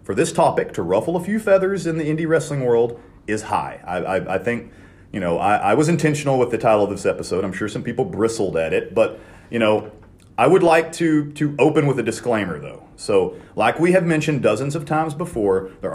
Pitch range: 100-140 Hz